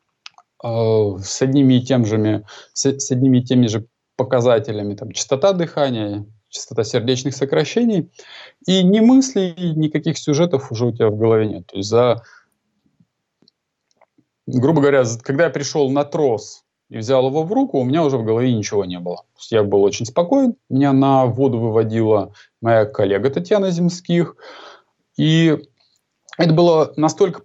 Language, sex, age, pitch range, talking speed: Russian, male, 20-39, 115-155 Hz, 145 wpm